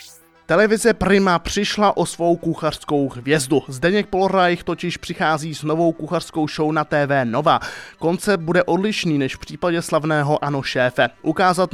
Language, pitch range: Czech, 150-180 Hz